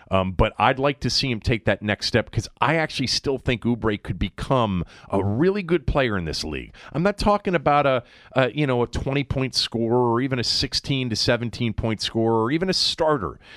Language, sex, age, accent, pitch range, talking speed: English, male, 40-59, American, 95-135 Hz, 220 wpm